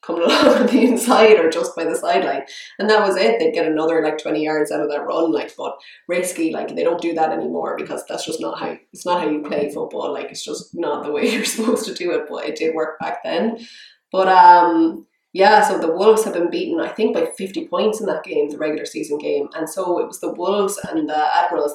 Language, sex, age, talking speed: English, female, 20-39, 250 wpm